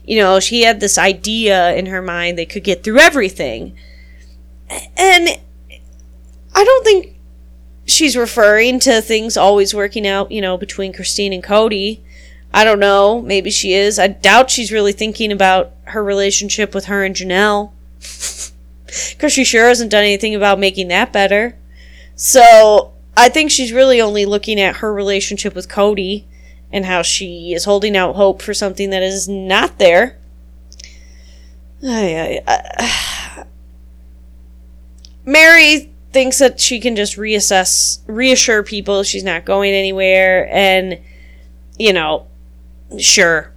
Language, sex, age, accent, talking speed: English, female, 20-39, American, 140 wpm